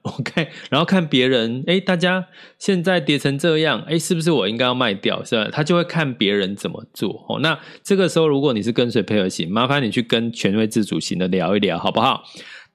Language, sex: Chinese, male